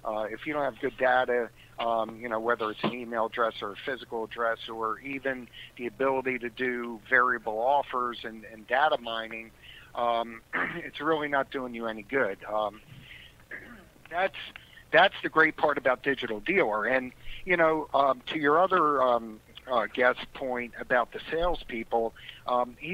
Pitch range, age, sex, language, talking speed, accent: 120-150 Hz, 50-69, male, English, 165 wpm, American